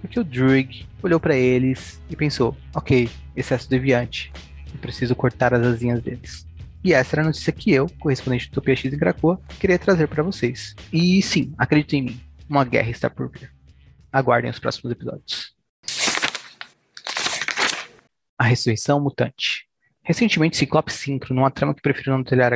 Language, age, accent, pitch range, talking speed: Portuguese, 20-39, Brazilian, 125-150 Hz, 155 wpm